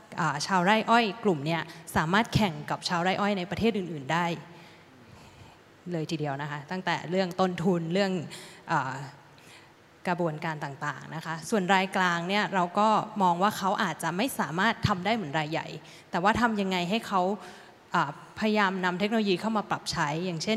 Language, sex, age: Thai, female, 20-39